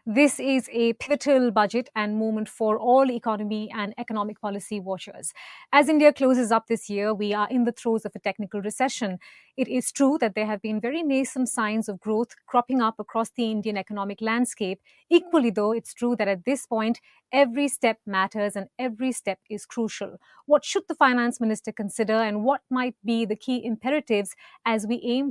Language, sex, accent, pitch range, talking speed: English, female, Indian, 210-250 Hz, 190 wpm